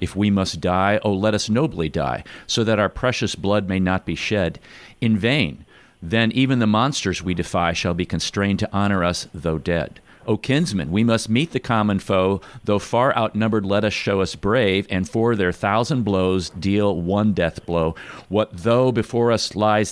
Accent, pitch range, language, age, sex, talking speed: American, 95-115 Hz, English, 50-69, male, 195 wpm